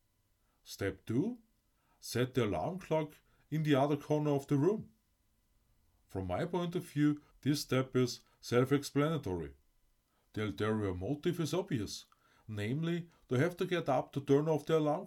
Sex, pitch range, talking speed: male, 105-150 Hz, 150 wpm